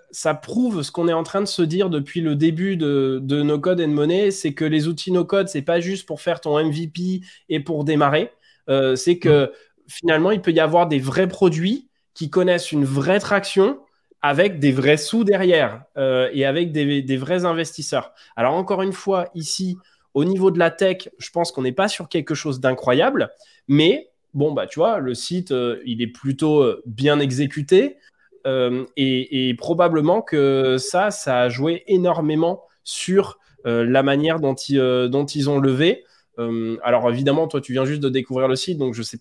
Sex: male